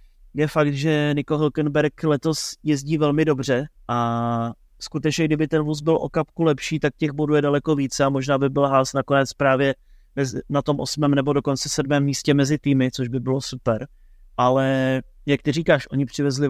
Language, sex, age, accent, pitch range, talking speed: Czech, male, 20-39, native, 130-145 Hz, 180 wpm